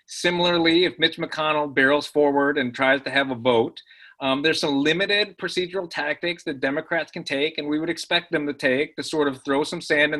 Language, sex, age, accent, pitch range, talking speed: English, male, 30-49, American, 135-175 Hz, 210 wpm